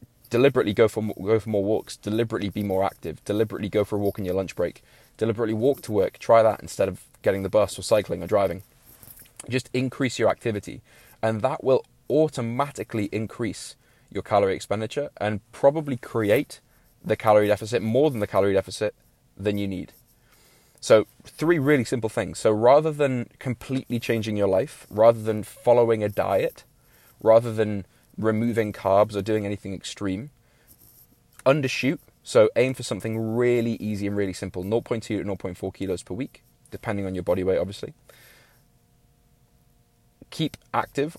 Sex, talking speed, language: male, 160 wpm, English